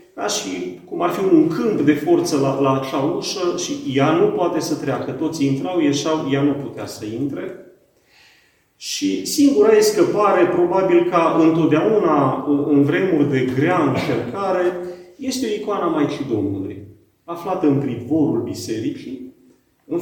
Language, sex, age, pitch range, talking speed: Romanian, male, 40-59, 135-205 Hz, 150 wpm